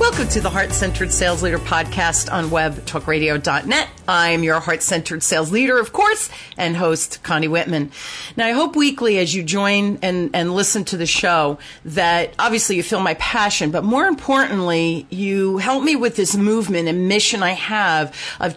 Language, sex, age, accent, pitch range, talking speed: English, female, 40-59, American, 170-215 Hz, 180 wpm